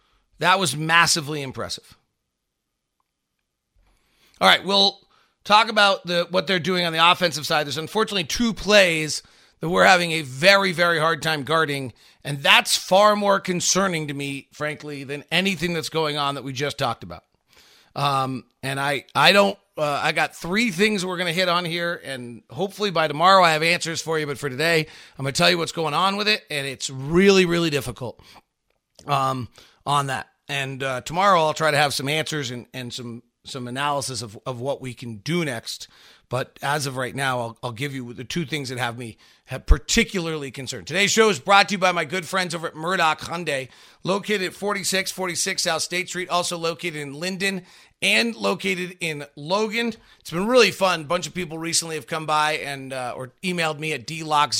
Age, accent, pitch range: 40-59, American, 140-180 Hz